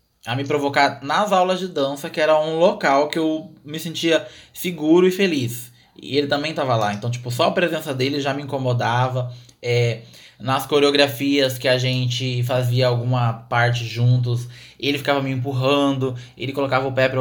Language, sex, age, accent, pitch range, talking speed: Portuguese, male, 20-39, Brazilian, 120-145 Hz, 175 wpm